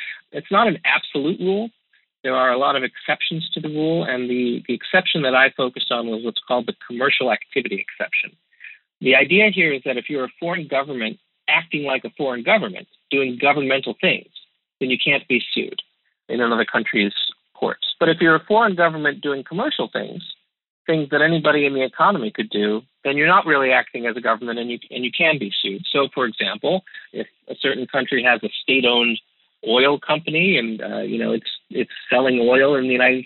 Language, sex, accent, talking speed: English, male, American, 200 wpm